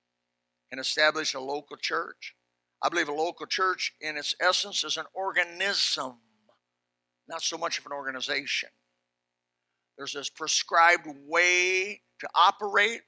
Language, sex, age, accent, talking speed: English, male, 60-79, American, 130 wpm